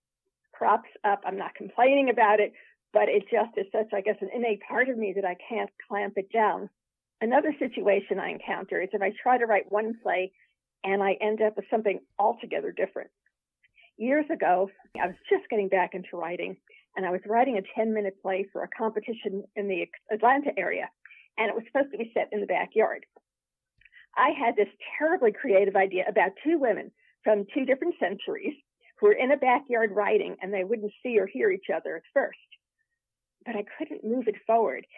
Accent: American